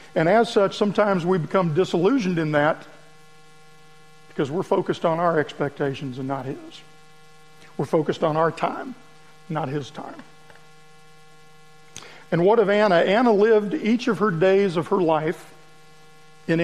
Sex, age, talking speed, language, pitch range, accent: male, 50-69, 145 wpm, English, 155-205 Hz, American